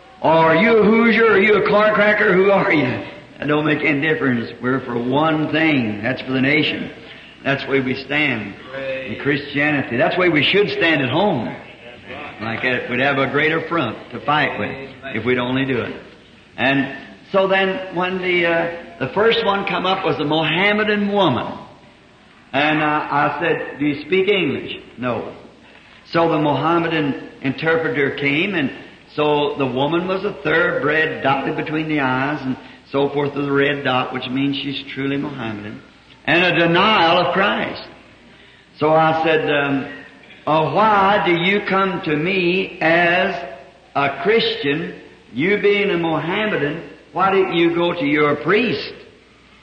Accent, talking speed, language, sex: American, 165 wpm, English, male